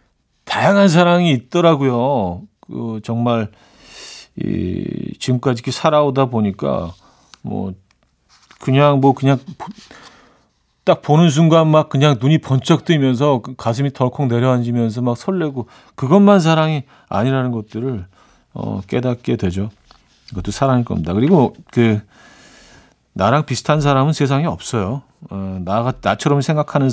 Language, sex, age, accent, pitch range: Korean, male, 40-59, native, 110-155 Hz